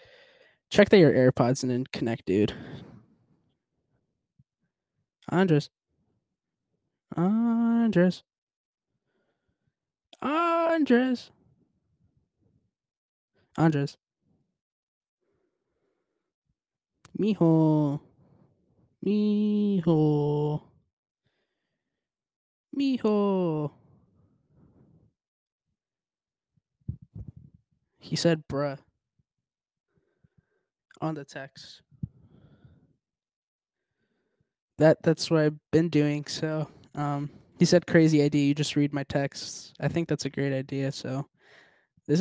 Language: English